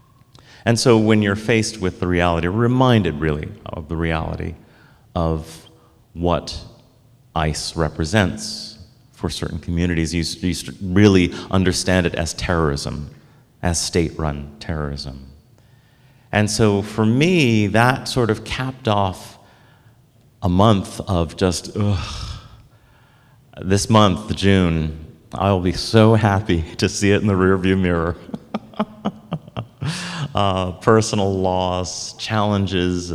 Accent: American